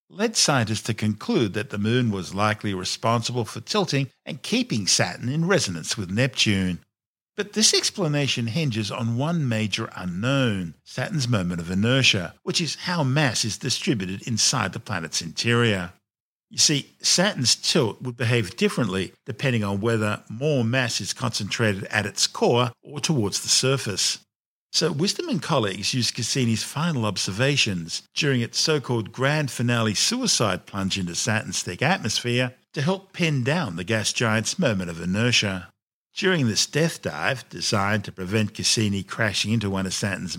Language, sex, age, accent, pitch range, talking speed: English, male, 50-69, Australian, 105-135 Hz, 155 wpm